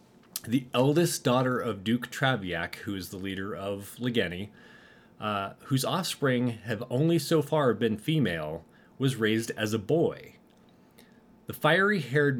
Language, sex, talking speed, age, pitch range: English, male, 135 wpm, 30-49, 110-150 Hz